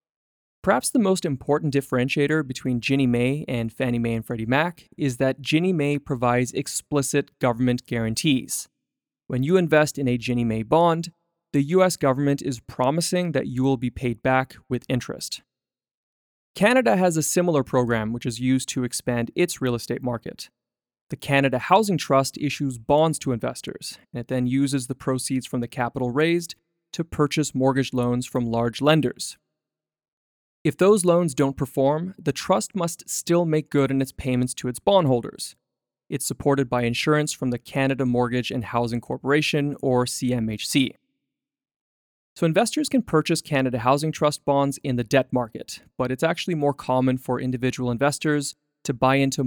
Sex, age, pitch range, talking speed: male, 20-39, 125-150 Hz, 165 wpm